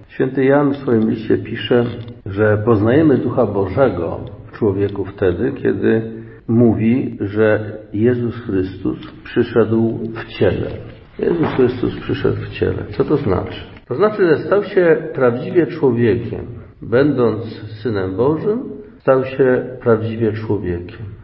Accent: native